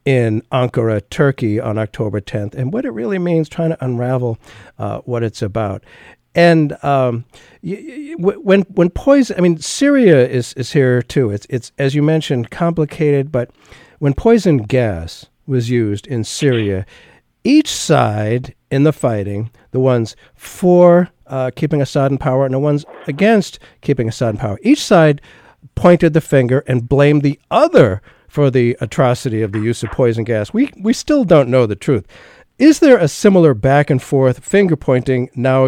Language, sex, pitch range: English, male, 115-155 Hz